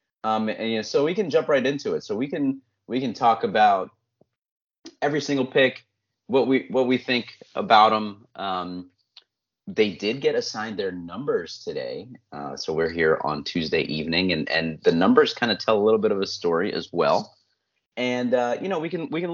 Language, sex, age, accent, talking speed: English, male, 30-49, American, 205 wpm